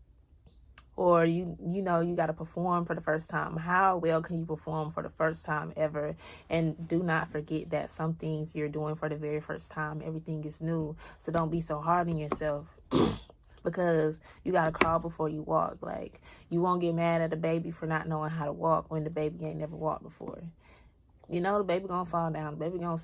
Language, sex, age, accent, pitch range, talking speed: English, female, 20-39, American, 155-180 Hz, 215 wpm